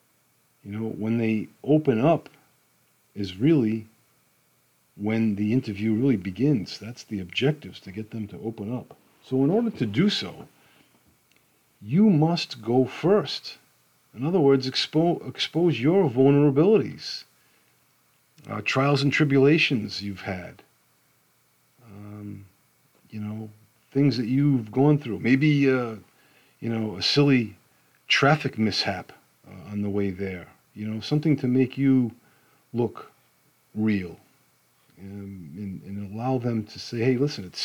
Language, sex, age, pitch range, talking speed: English, male, 40-59, 105-140 Hz, 135 wpm